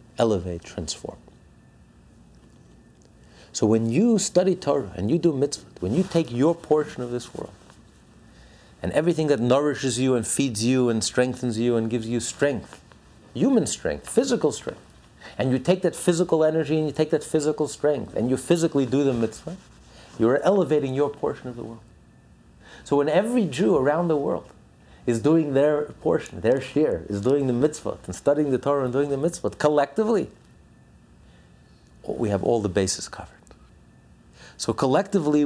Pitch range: 115-165 Hz